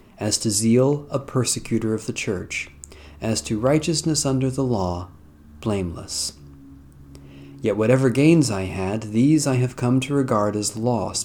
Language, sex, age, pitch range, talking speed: English, male, 40-59, 95-125 Hz, 150 wpm